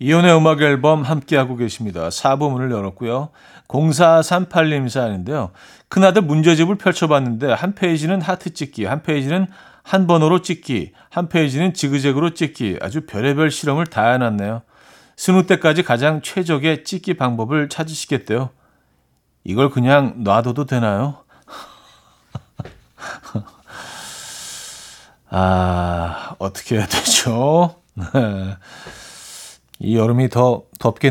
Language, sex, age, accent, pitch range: Korean, male, 40-59, native, 115-165 Hz